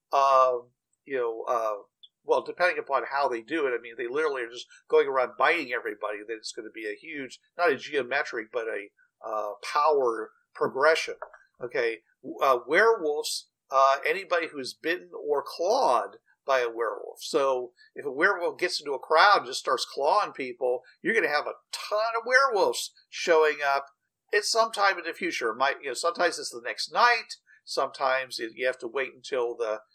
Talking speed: 180 wpm